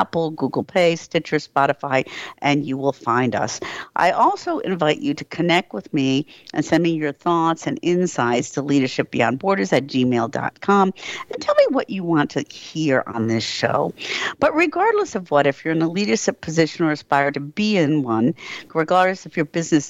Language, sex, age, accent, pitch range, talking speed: English, female, 50-69, American, 140-190 Hz, 180 wpm